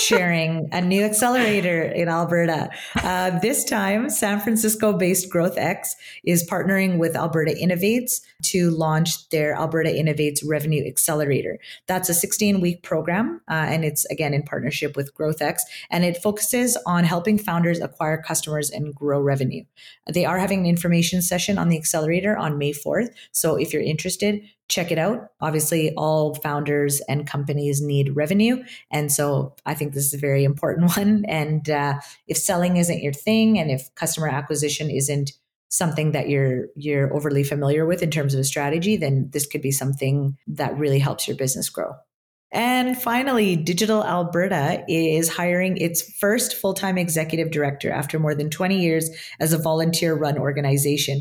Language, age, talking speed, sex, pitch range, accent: English, 30-49, 160 wpm, female, 145-180 Hz, American